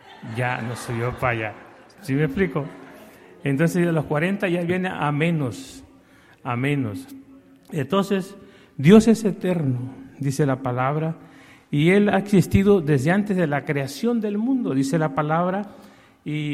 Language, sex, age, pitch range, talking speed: Spanish, male, 50-69, 135-190 Hz, 150 wpm